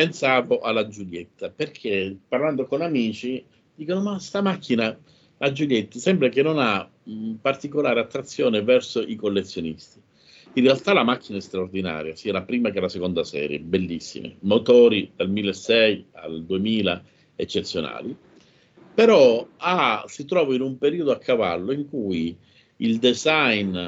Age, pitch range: 50-69, 100-135 Hz